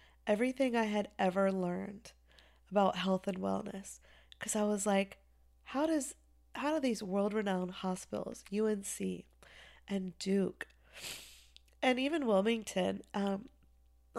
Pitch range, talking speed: 170-200 Hz, 120 wpm